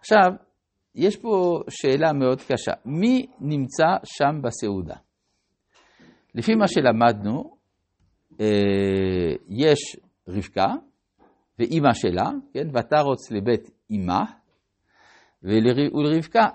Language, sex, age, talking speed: Hebrew, male, 60-79, 80 wpm